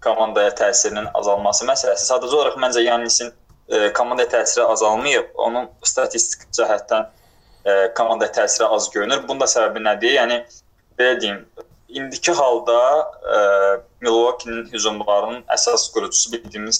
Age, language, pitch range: 20-39, English, 110-170 Hz